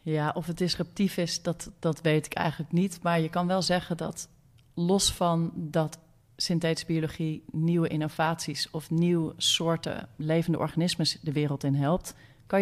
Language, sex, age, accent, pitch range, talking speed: Dutch, female, 40-59, Dutch, 150-175 Hz, 160 wpm